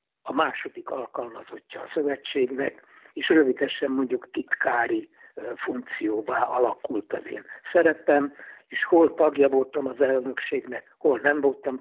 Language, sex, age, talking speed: Hungarian, male, 60-79, 115 wpm